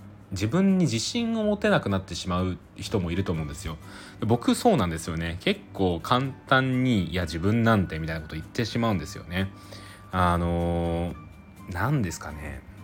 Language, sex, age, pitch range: Japanese, male, 20-39, 90-115 Hz